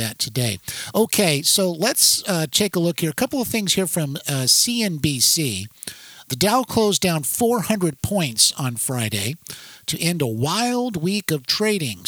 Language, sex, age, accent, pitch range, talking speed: English, male, 50-69, American, 135-185 Hz, 160 wpm